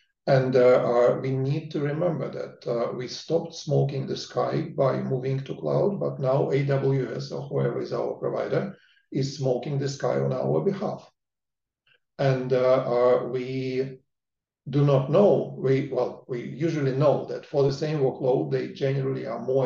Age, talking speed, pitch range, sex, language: 50-69, 165 wpm, 125-155 Hz, male, English